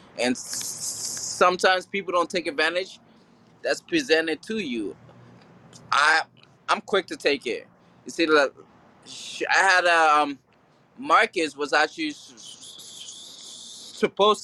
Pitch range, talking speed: 135-170 Hz, 105 wpm